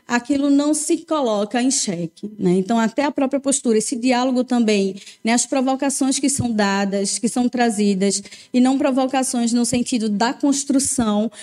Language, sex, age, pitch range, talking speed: Portuguese, female, 20-39, 215-270 Hz, 165 wpm